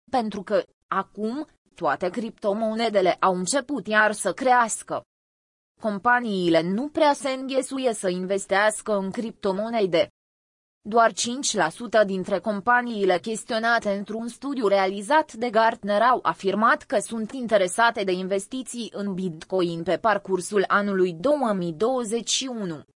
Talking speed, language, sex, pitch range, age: 110 wpm, Romanian, female, 185-235 Hz, 20-39